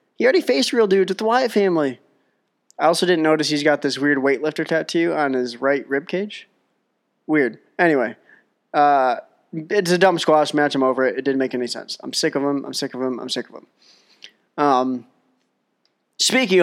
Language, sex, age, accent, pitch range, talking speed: English, male, 20-39, American, 140-165 Hz, 195 wpm